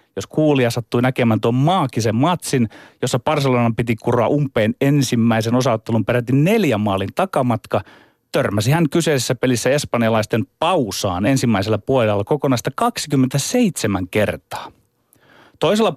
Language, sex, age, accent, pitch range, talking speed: Finnish, male, 30-49, native, 115-155 Hz, 115 wpm